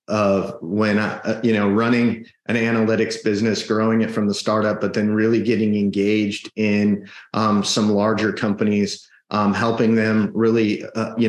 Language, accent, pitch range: English, American, 105-125 Hz